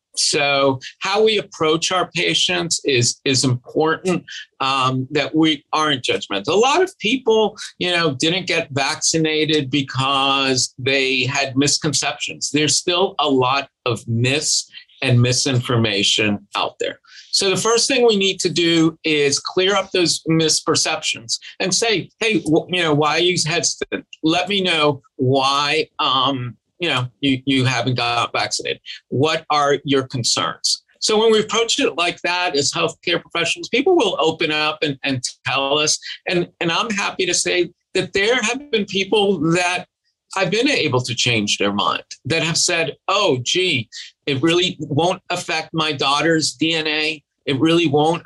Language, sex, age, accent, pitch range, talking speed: English, male, 50-69, American, 135-180 Hz, 160 wpm